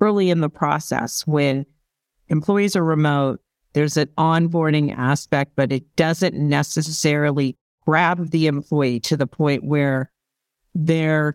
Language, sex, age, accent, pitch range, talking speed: English, female, 50-69, American, 145-180 Hz, 125 wpm